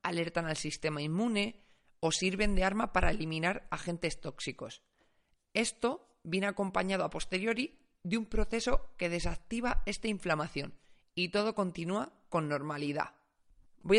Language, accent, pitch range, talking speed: Spanish, Spanish, 170-220 Hz, 130 wpm